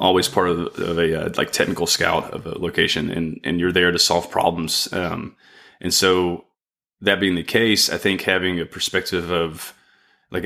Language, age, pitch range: English, 20-39, 85-100 Hz